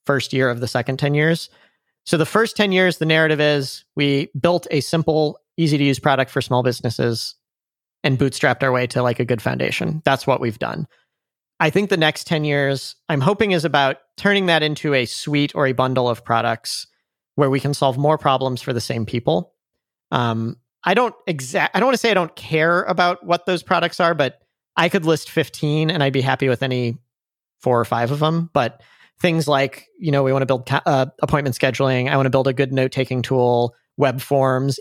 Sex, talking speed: male, 215 wpm